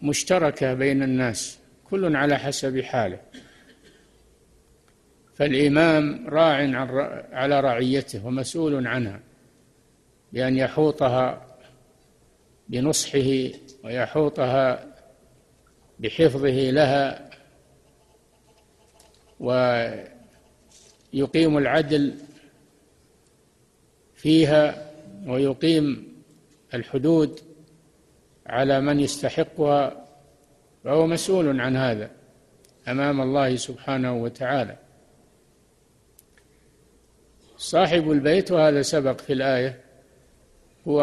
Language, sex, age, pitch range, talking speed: Arabic, male, 50-69, 130-155 Hz, 60 wpm